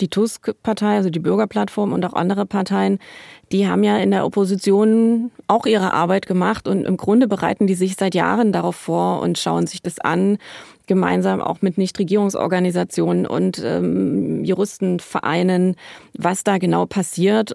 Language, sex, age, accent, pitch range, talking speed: German, female, 30-49, German, 175-210 Hz, 155 wpm